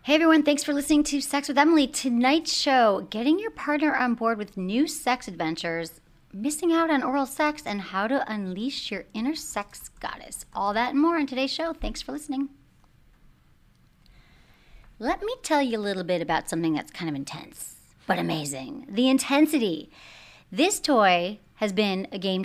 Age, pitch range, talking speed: 30-49, 190-290 Hz, 175 wpm